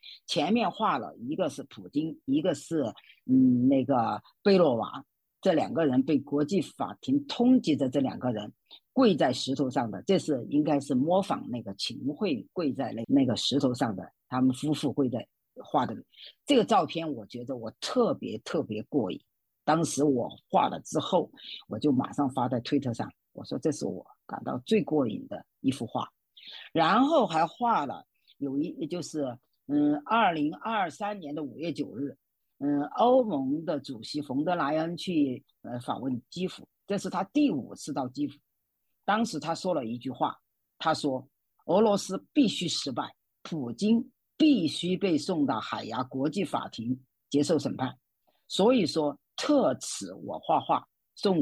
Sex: female